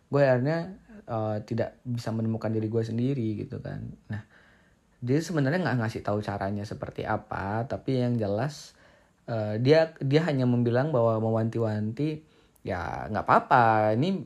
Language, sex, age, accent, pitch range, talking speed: Indonesian, male, 20-39, native, 110-140 Hz, 145 wpm